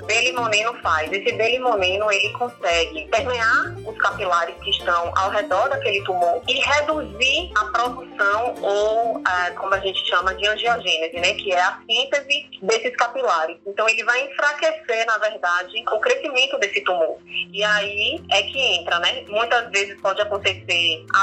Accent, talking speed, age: Brazilian, 160 wpm, 20-39